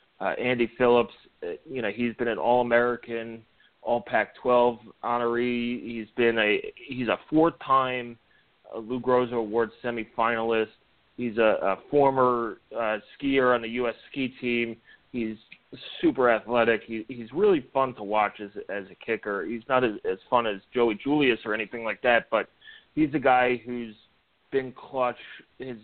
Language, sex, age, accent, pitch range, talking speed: English, male, 30-49, American, 110-125 Hz, 155 wpm